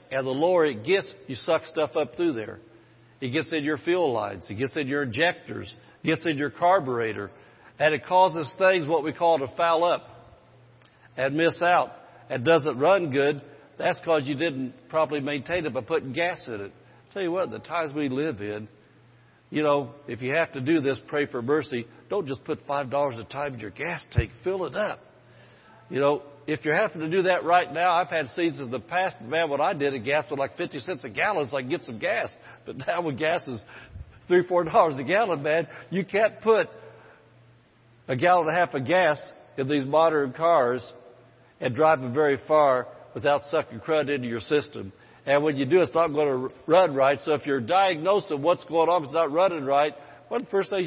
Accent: American